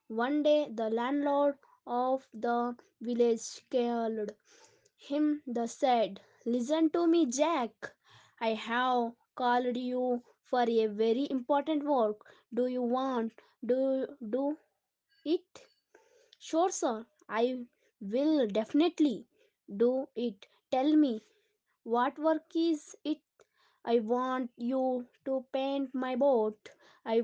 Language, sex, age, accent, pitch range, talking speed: Telugu, female, 20-39, native, 240-295 Hz, 110 wpm